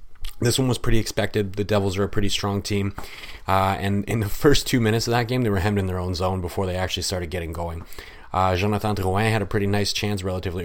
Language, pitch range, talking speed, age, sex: English, 95-110 Hz, 250 wpm, 30-49, male